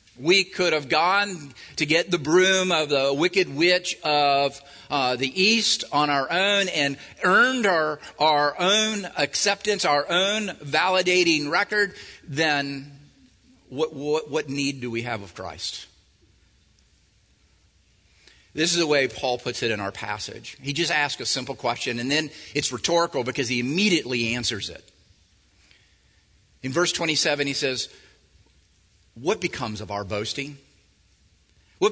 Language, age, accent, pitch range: English, 50-69, American, 120-180 Hz